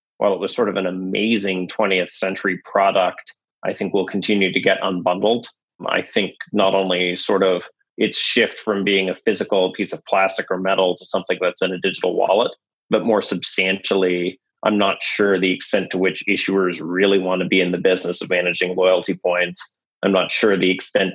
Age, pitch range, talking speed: 30-49, 90-100 Hz, 195 wpm